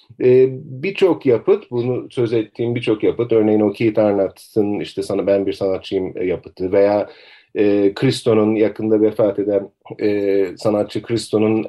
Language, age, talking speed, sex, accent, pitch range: Turkish, 40-59, 140 wpm, male, native, 110-145 Hz